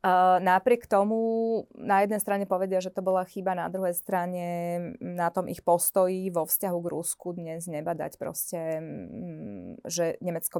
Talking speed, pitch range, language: 145 wpm, 170-205 Hz, Slovak